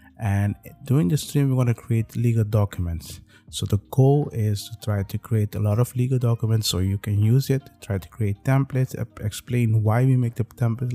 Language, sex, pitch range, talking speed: English, male, 100-120 Hz, 210 wpm